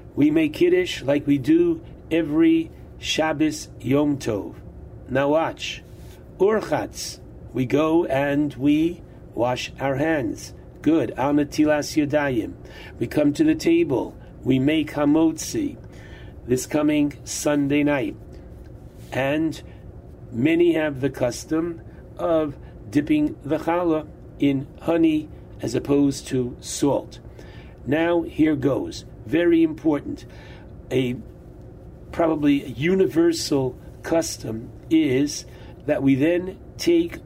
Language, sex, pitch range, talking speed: English, male, 140-185 Hz, 100 wpm